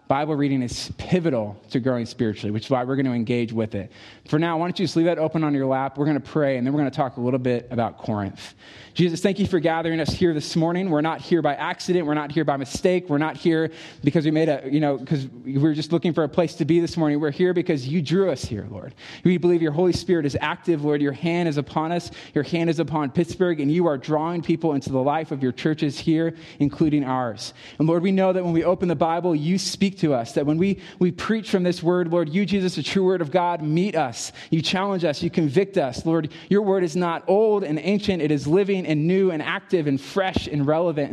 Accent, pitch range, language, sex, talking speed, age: American, 135-175 Hz, English, male, 265 wpm, 20-39